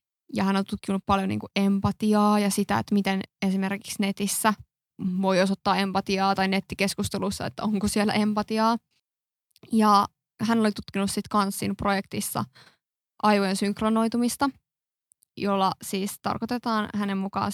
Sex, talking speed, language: female, 125 wpm, Finnish